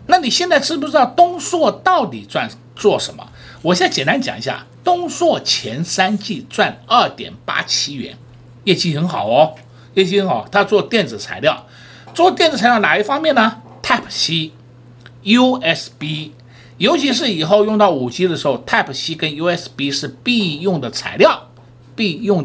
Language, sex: Chinese, male